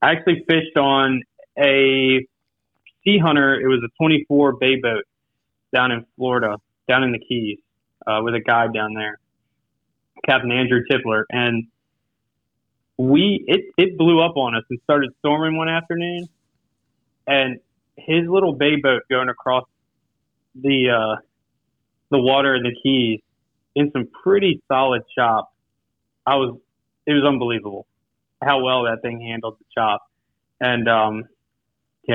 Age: 20-39